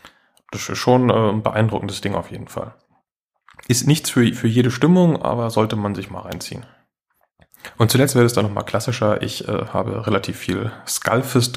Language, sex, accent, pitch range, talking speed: German, male, German, 100-120 Hz, 175 wpm